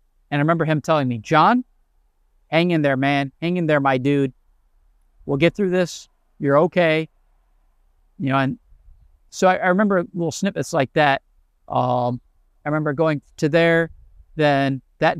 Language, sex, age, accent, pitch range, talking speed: English, male, 40-59, American, 125-160 Hz, 160 wpm